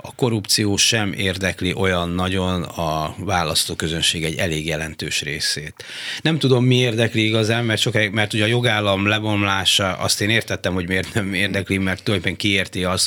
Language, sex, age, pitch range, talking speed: Hungarian, male, 30-49, 90-110 Hz, 160 wpm